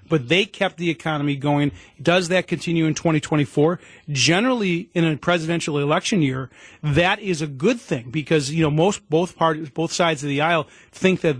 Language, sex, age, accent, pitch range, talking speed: English, male, 40-59, American, 145-175 Hz, 185 wpm